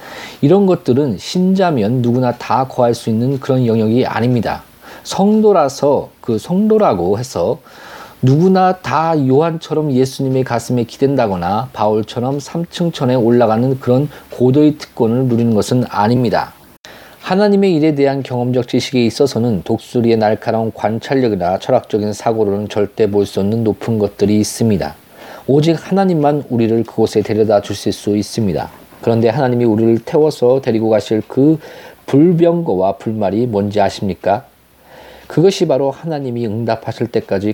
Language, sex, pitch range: Korean, male, 110-145 Hz